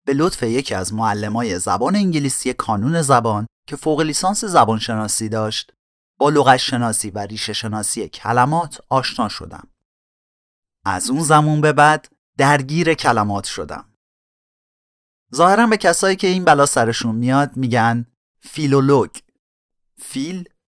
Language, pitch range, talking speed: Persian, 110-155 Hz, 120 wpm